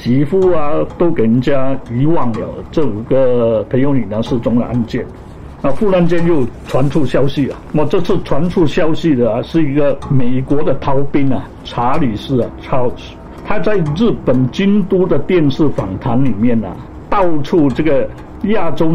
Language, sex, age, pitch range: Chinese, male, 60-79, 125-165 Hz